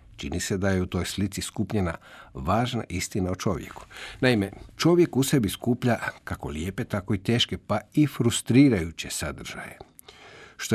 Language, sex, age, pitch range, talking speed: Croatian, male, 50-69, 90-125 Hz, 150 wpm